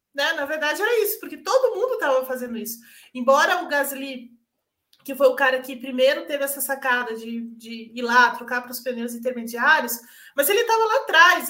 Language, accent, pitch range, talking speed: Portuguese, Brazilian, 260-330 Hz, 195 wpm